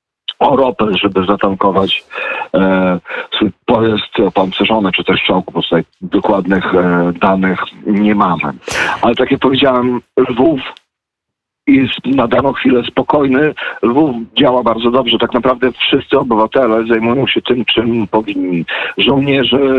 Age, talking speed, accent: 50-69, 125 wpm, native